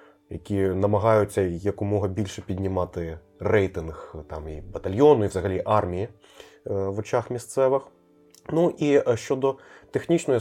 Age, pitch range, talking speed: 20-39, 95-125 Hz, 110 wpm